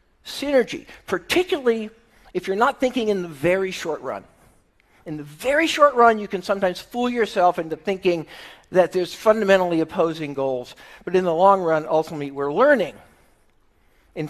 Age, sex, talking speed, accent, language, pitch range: 50-69, male, 155 wpm, American, English, 165-230 Hz